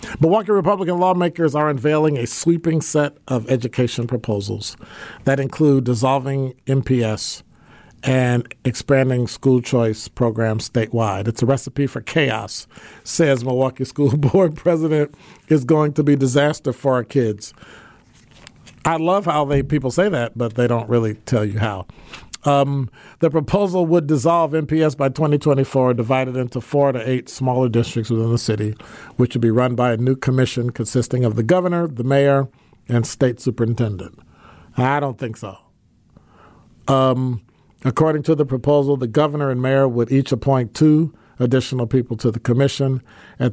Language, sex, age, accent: English, male, 50-69, American